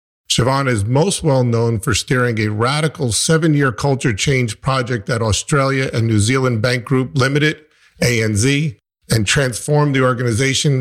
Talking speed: 140 wpm